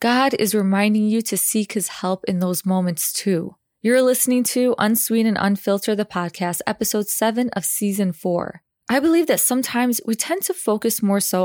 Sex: female